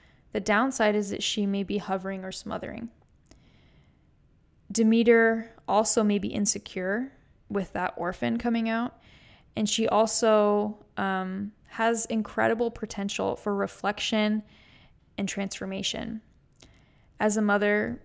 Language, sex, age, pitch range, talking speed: English, female, 10-29, 190-220 Hz, 115 wpm